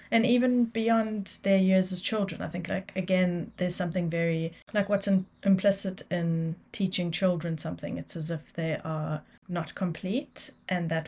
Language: English